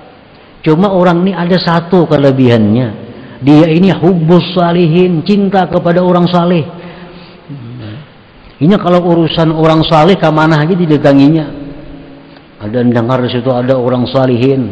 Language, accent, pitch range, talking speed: Indonesian, native, 115-170 Hz, 120 wpm